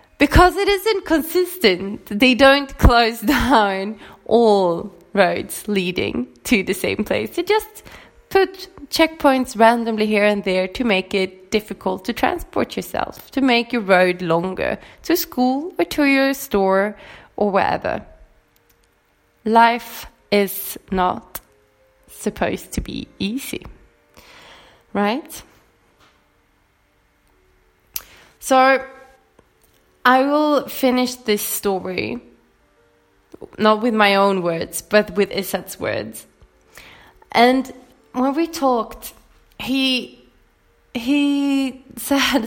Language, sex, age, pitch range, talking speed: English, female, 20-39, 195-265 Hz, 105 wpm